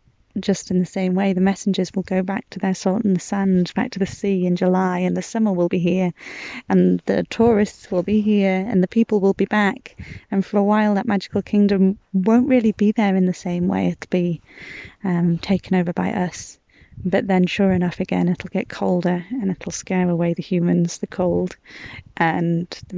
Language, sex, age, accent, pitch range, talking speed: English, female, 20-39, British, 180-205 Hz, 210 wpm